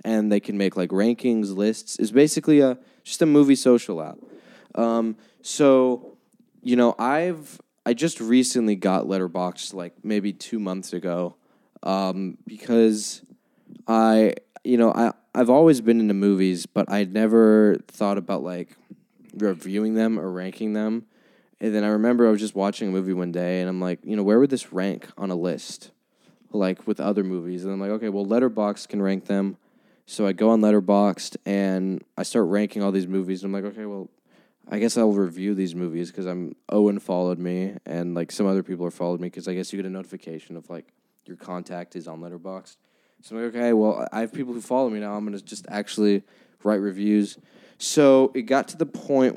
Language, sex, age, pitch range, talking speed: English, male, 10-29, 95-115 Hz, 200 wpm